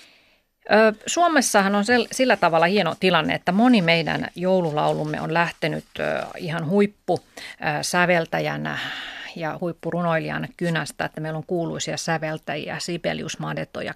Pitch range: 155-185 Hz